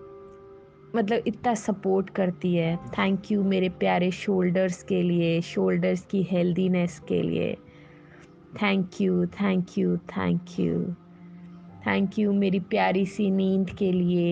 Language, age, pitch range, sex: Hindi, 20-39, 160-195 Hz, female